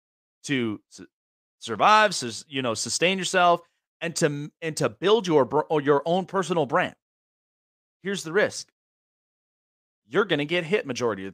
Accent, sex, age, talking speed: American, male, 30-49, 145 wpm